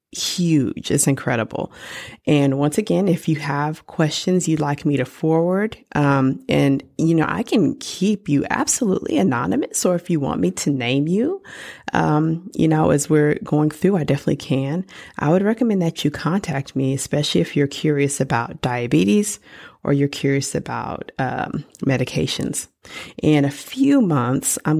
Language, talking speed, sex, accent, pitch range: English, 160 wpm, female, American, 140-180 Hz